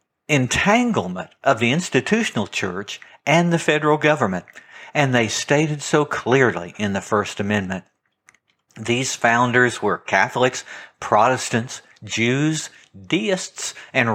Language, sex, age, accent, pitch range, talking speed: English, male, 60-79, American, 110-170 Hz, 110 wpm